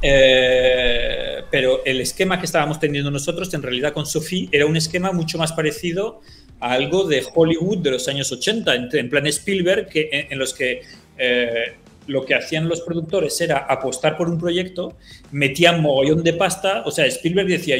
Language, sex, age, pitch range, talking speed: Spanish, male, 30-49, 140-185 Hz, 180 wpm